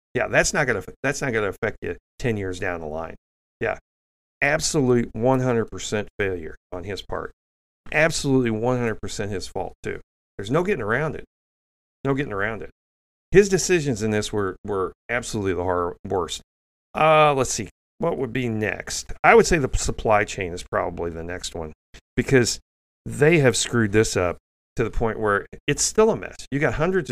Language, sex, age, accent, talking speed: English, male, 40-59, American, 170 wpm